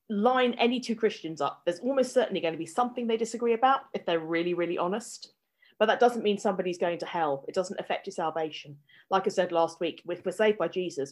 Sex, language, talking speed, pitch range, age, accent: female, English, 230 wpm, 165-205 Hz, 30-49, British